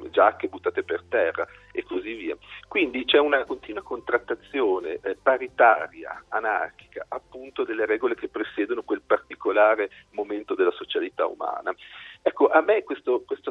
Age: 40-59